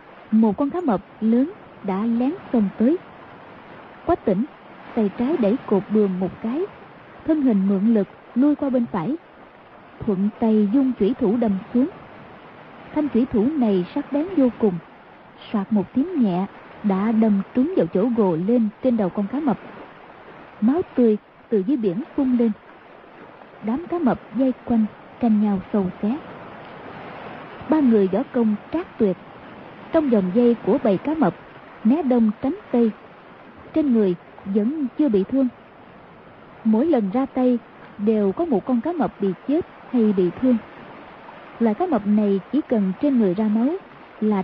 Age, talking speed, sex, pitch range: 20-39, 165 wpm, female, 205-265 Hz